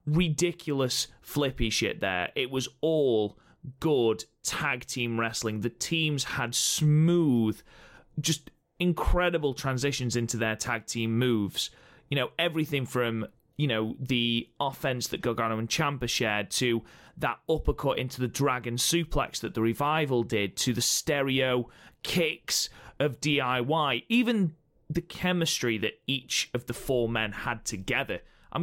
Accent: British